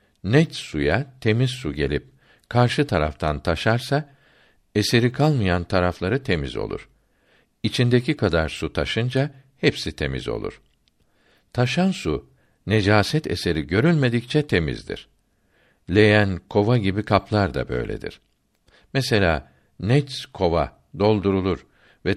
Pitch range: 85-125 Hz